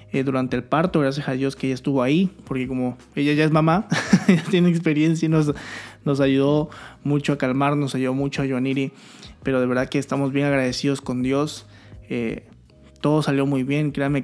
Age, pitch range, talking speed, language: 20-39, 125-150 Hz, 200 wpm, Spanish